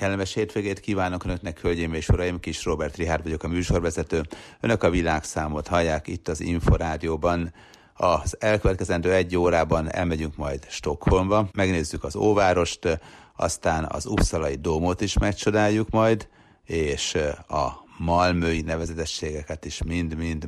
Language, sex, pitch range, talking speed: Hungarian, male, 75-90 Hz, 125 wpm